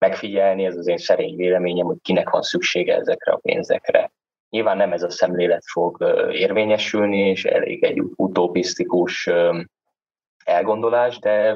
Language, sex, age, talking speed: Hungarian, male, 20-39, 135 wpm